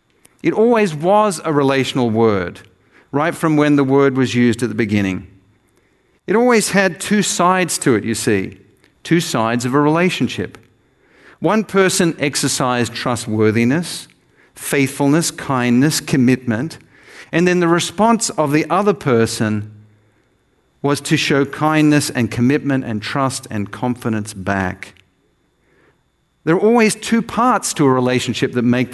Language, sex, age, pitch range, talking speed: English, male, 50-69, 115-155 Hz, 135 wpm